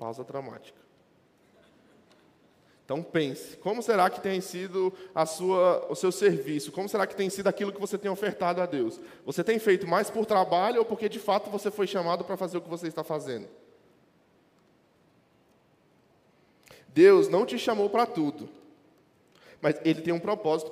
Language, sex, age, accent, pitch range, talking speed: Portuguese, male, 20-39, Brazilian, 170-205 Hz, 160 wpm